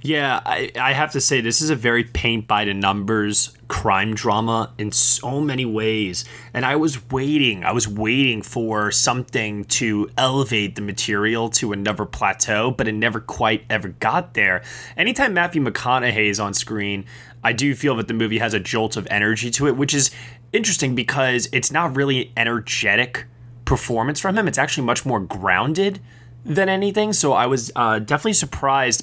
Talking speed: 170 wpm